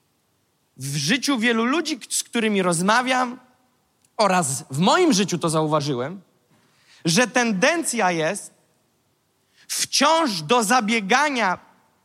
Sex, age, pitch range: male, 30-49, 205-280 Hz